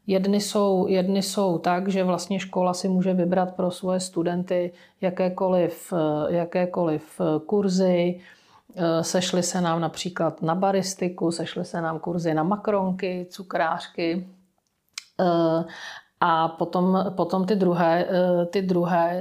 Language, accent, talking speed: Czech, native, 110 wpm